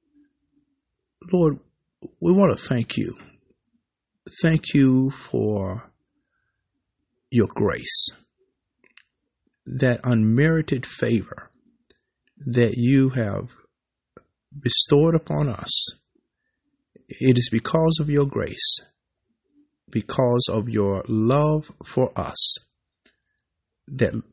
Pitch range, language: 110-160 Hz, English